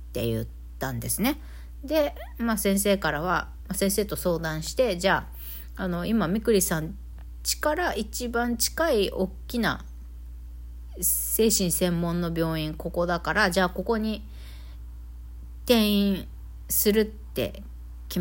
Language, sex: Japanese, female